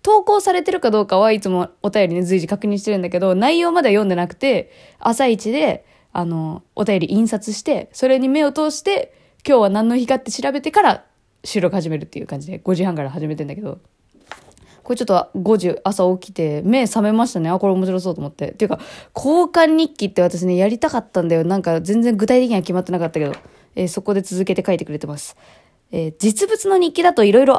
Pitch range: 185-300 Hz